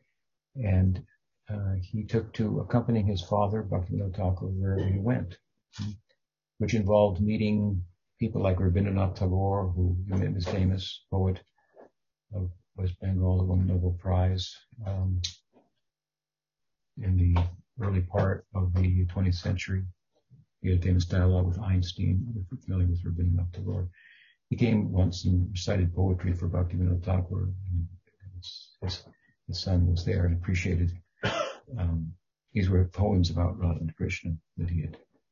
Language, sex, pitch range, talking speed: English, male, 90-110 Hz, 135 wpm